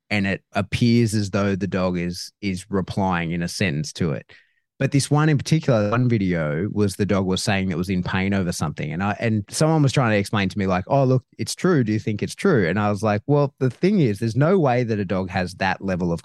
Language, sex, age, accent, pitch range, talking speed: English, male, 20-39, Australian, 95-130 Hz, 260 wpm